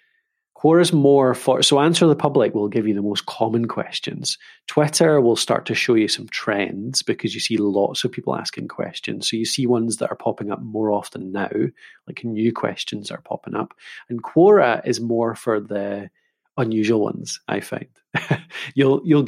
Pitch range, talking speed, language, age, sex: 110-150 Hz, 185 wpm, English, 30-49, male